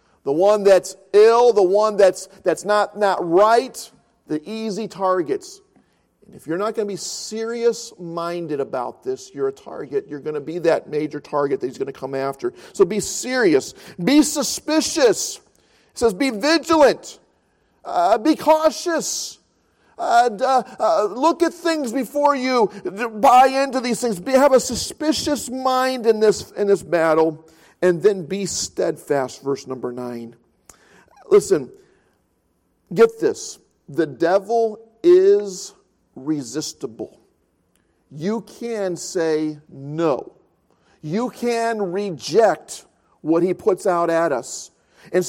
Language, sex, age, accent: English, male, 40-59, American